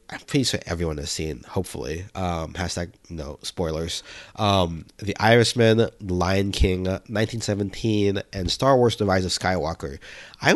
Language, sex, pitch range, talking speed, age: English, male, 90-110 Hz, 150 wpm, 30-49